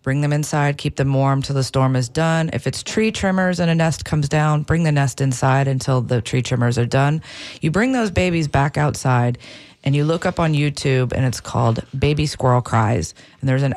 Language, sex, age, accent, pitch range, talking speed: English, female, 40-59, American, 125-150 Hz, 220 wpm